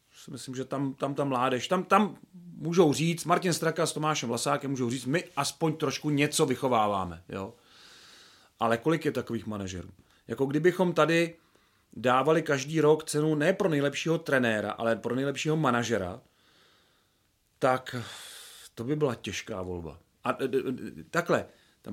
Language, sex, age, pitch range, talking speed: Czech, male, 40-59, 125-165 Hz, 145 wpm